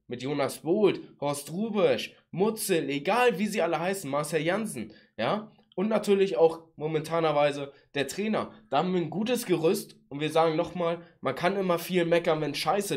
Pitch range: 135-170 Hz